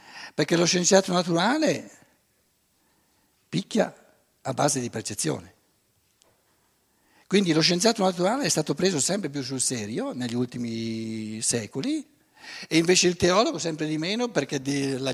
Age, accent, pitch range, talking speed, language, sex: 60-79, native, 135-190 Hz, 125 wpm, Italian, male